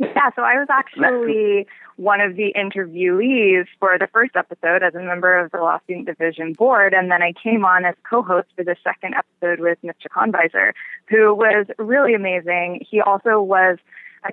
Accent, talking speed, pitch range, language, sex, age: American, 185 wpm, 180-215 Hz, English, female, 20-39